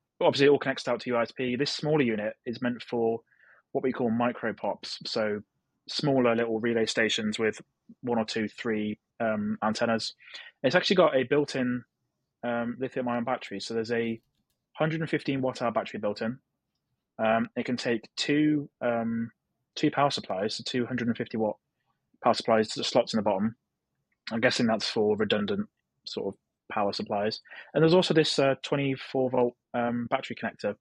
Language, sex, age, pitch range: English, male, 20-39, 115-140 Hz